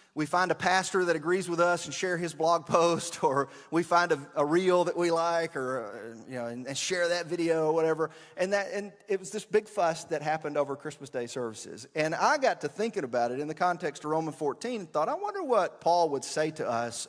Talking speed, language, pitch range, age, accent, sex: 240 wpm, English, 135-180 Hz, 40-59, American, male